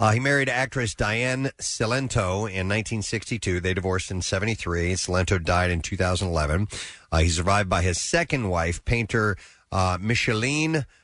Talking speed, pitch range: 140 wpm, 90-115 Hz